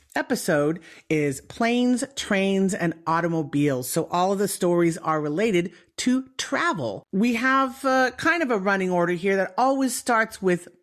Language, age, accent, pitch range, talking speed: English, 40-59, American, 155-235 Hz, 155 wpm